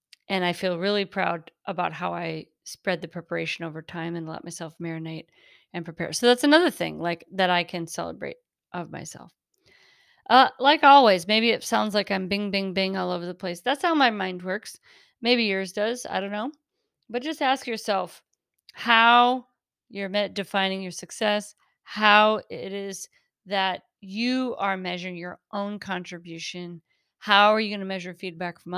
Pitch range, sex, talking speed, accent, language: 180-215 Hz, female, 175 wpm, American, English